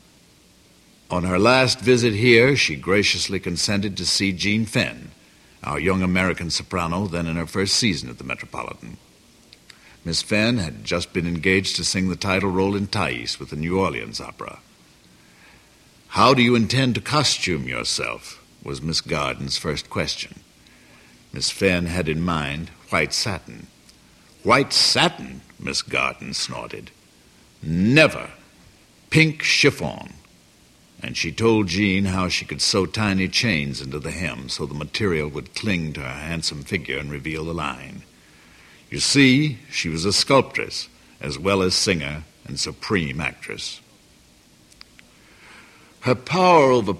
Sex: male